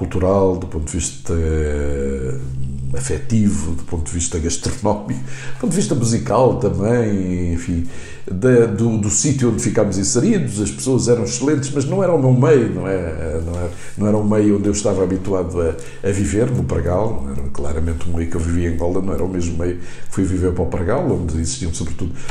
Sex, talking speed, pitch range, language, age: male, 195 wpm, 85-110 Hz, Portuguese, 60-79